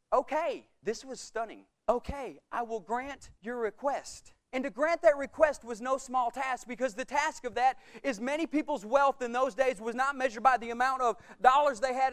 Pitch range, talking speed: 245-295 Hz, 205 wpm